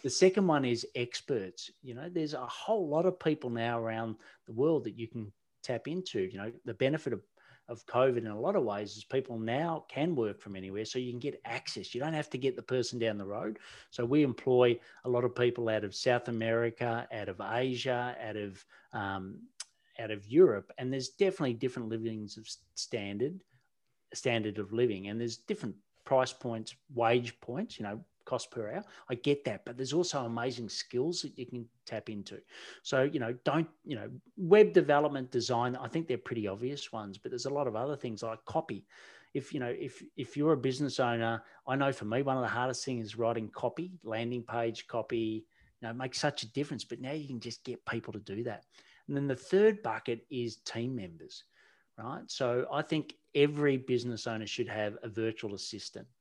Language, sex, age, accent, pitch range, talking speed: English, male, 40-59, Australian, 115-140 Hz, 210 wpm